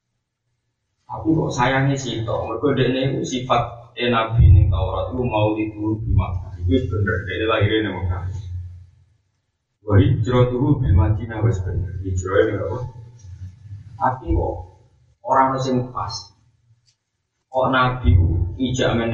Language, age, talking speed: Malay, 20-39, 145 wpm